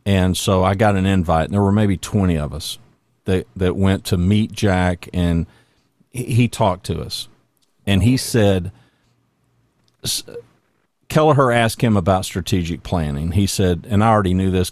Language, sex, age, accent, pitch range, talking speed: English, male, 50-69, American, 90-110 Hz, 170 wpm